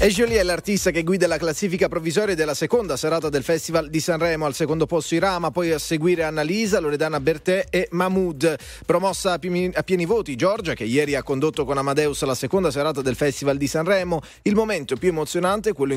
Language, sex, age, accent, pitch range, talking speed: Italian, male, 30-49, native, 130-165 Hz, 205 wpm